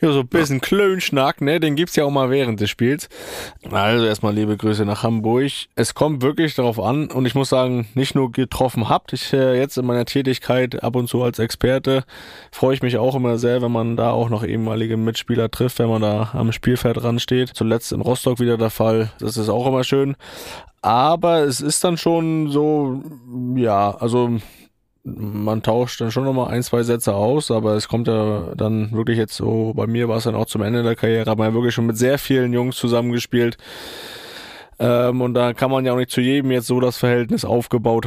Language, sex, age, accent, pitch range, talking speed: German, male, 20-39, German, 110-125 Hz, 215 wpm